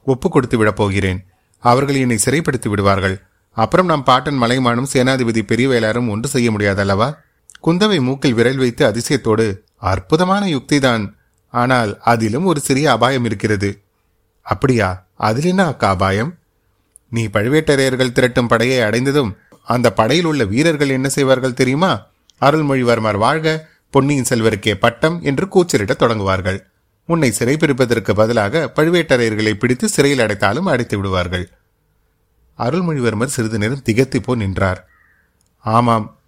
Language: Tamil